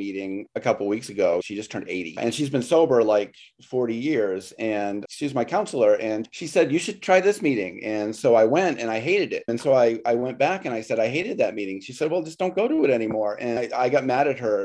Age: 30-49